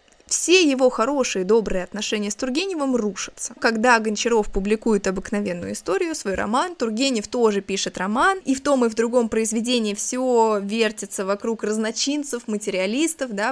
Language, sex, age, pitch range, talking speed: Russian, female, 20-39, 215-285 Hz, 145 wpm